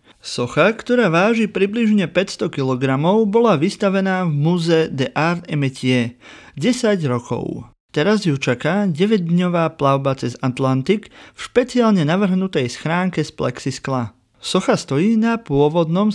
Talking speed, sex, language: 125 wpm, male, Slovak